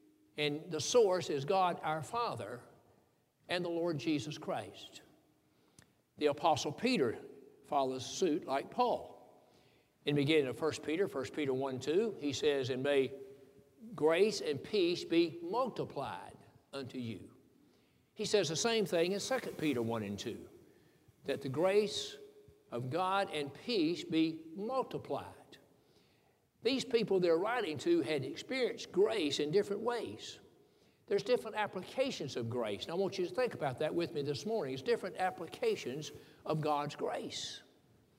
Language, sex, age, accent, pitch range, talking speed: English, male, 60-79, American, 145-220 Hz, 150 wpm